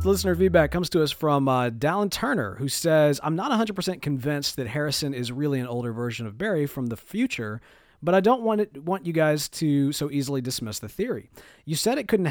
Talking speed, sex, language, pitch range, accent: 220 wpm, male, English, 125-155 Hz, American